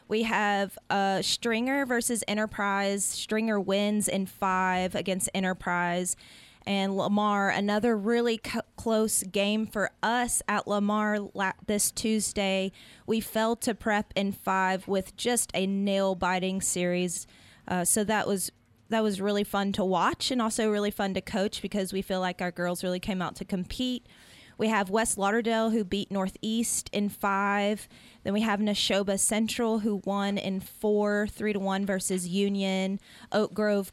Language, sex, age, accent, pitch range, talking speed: English, female, 20-39, American, 190-215 Hz, 150 wpm